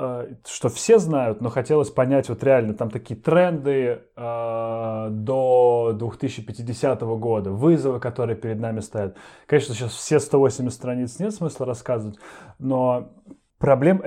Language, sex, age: Russian, male, 20-39